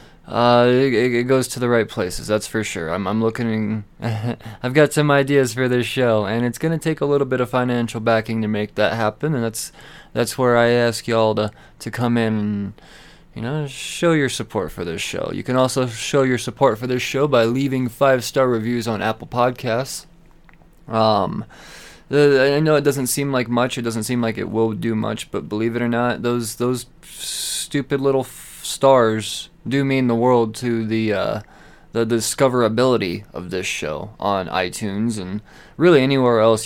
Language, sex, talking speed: English, male, 195 wpm